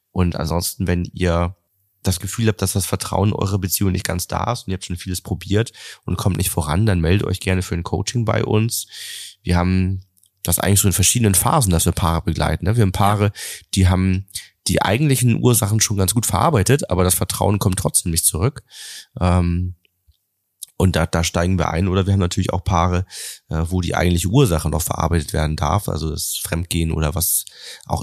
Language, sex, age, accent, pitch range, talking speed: German, male, 30-49, German, 85-105 Hz, 200 wpm